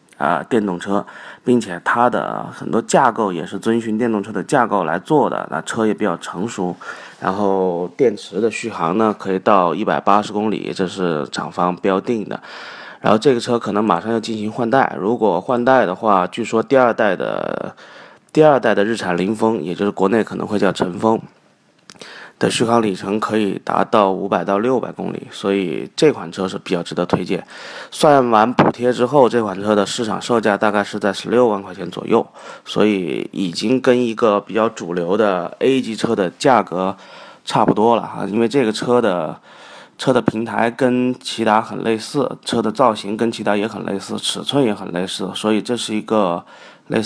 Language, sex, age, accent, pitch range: Chinese, male, 30-49, native, 100-115 Hz